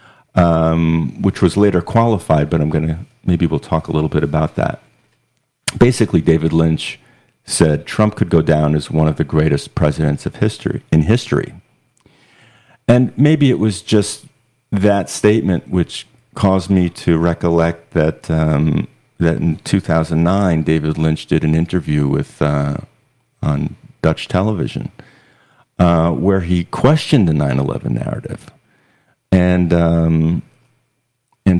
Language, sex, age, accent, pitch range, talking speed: English, male, 50-69, American, 80-110 Hz, 135 wpm